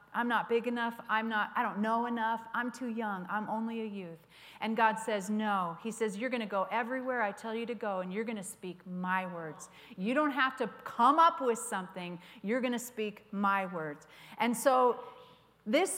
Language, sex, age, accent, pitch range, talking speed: English, female, 40-59, American, 195-255 Hz, 215 wpm